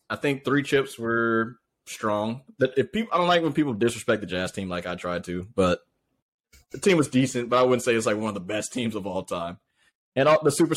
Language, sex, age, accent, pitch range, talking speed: English, male, 20-39, American, 105-150 Hz, 250 wpm